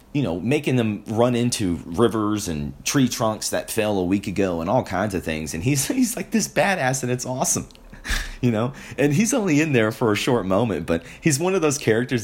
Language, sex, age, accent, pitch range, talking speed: English, male, 30-49, American, 85-130 Hz, 225 wpm